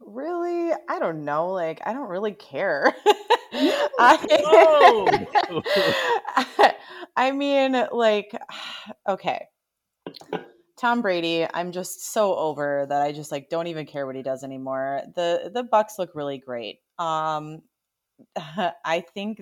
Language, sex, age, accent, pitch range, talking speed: English, female, 30-49, American, 140-175 Hz, 125 wpm